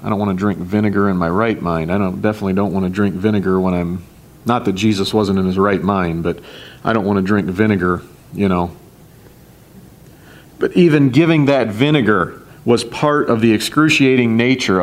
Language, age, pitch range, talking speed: English, 40-59, 95-125 Hz, 195 wpm